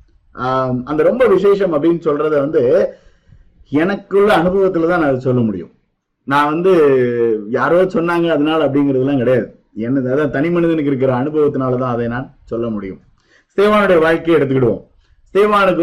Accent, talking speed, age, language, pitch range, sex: native, 120 wpm, 50-69, Tamil, 130-185 Hz, male